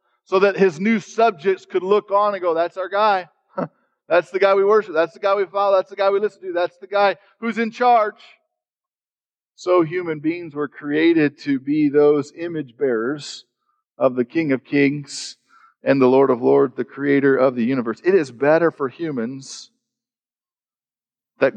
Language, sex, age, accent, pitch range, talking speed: English, male, 40-59, American, 130-180 Hz, 185 wpm